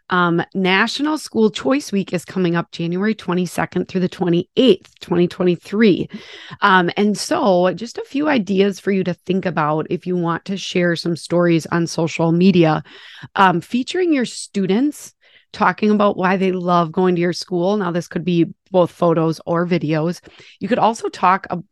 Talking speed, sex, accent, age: 170 wpm, female, American, 30-49